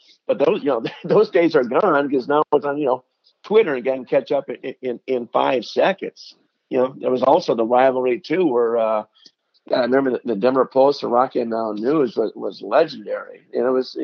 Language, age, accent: English, 50-69, American